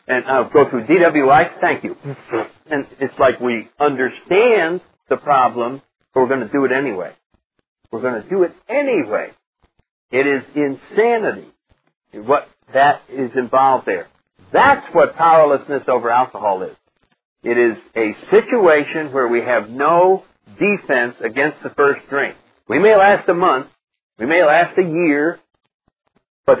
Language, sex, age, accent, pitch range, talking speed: English, male, 60-79, American, 125-165 Hz, 145 wpm